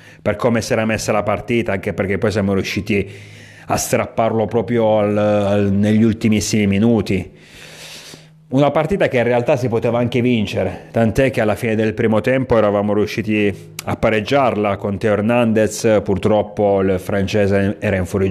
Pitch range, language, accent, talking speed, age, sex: 100-120 Hz, Italian, native, 165 wpm, 30-49, male